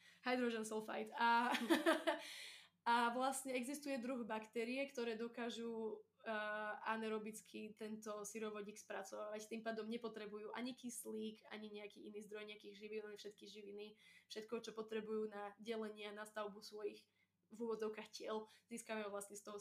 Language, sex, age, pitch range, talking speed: Slovak, female, 20-39, 215-245 Hz, 130 wpm